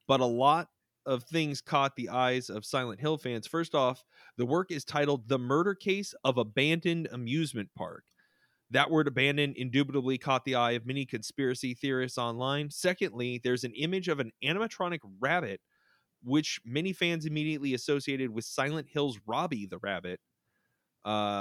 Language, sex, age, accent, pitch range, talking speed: English, male, 30-49, American, 120-150 Hz, 160 wpm